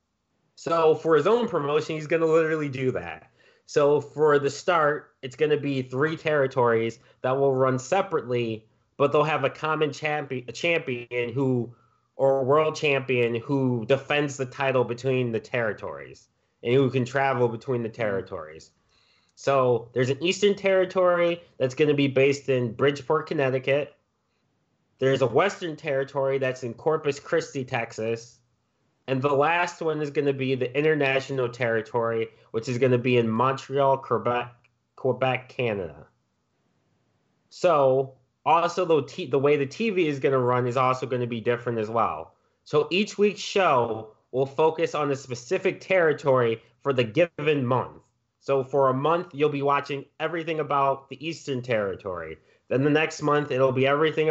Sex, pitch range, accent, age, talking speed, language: male, 125-150 Hz, American, 30-49, 160 wpm, English